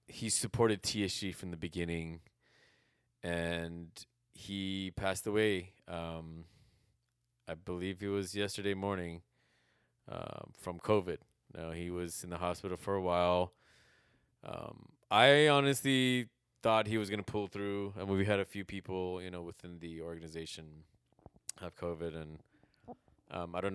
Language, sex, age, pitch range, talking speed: English, male, 20-39, 80-100 Hz, 145 wpm